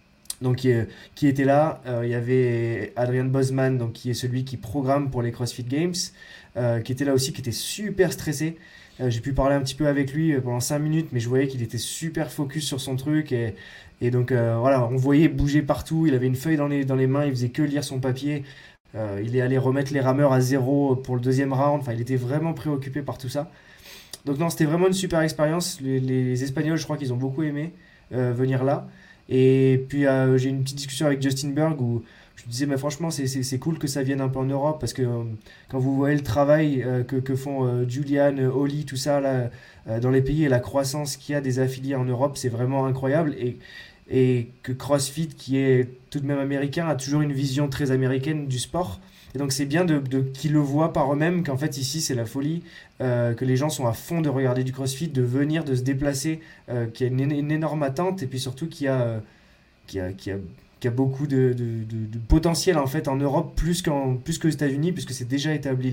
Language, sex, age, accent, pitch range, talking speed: French, male, 20-39, French, 125-150 Hz, 240 wpm